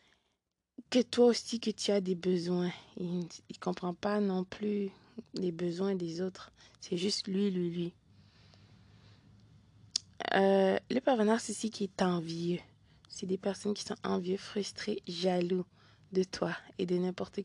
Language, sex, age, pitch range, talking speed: French, female, 20-39, 175-220 Hz, 150 wpm